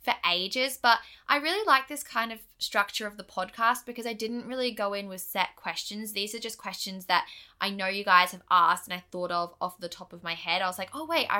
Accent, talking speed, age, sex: Australian, 260 wpm, 10-29, female